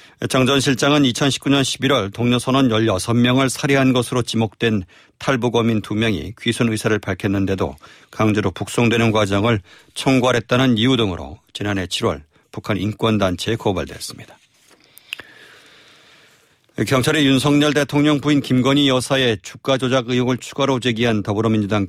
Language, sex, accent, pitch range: Korean, male, native, 105-130 Hz